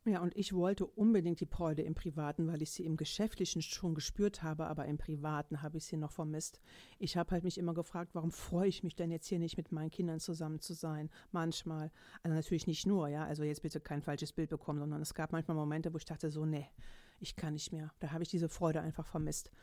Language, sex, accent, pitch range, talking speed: German, female, German, 160-195 Hz, 240 wpm